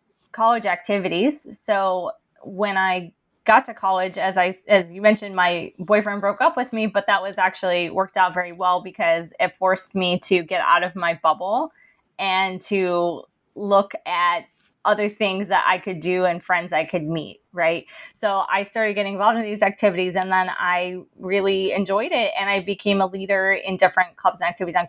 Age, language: 20-39, English